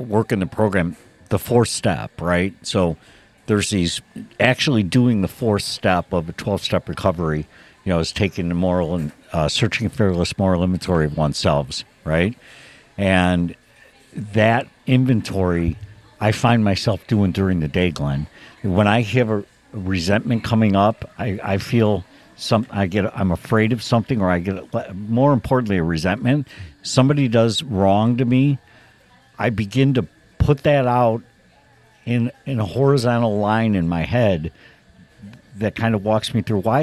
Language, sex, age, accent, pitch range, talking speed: English, male, 60-79, American, 95-120 Hz, 160 wpm